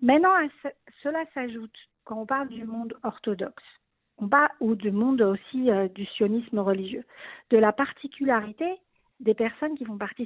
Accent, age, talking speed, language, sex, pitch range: French, 50-69, 145 wpm, French, female, 210-270 Hz